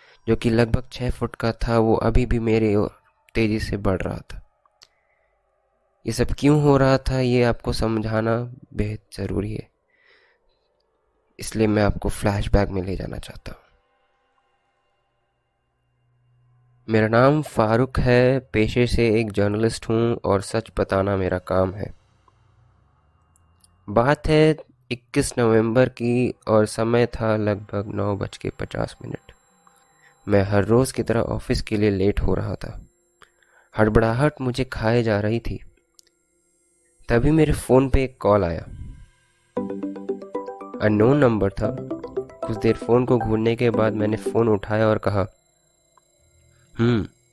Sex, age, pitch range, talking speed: male, 20-39, 105-125 Hz, 130 wpm